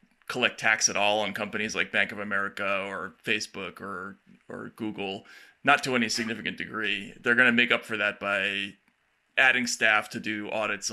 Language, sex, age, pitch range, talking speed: English, male, 30-49, 110-125 Hz, 180 wpm